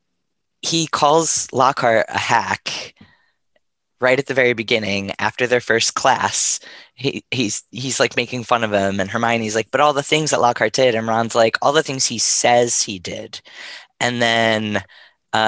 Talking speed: 175 wpm